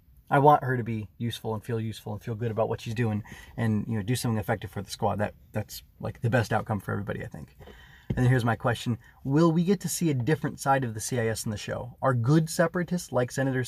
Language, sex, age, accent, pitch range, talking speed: English, male, 20-39, American, 115-145 Hz, 260 wpm